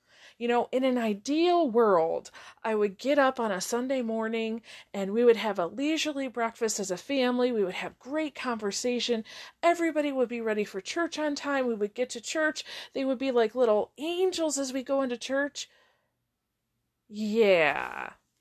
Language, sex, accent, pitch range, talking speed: English, female, American, 215-285 Hz, 175 wpm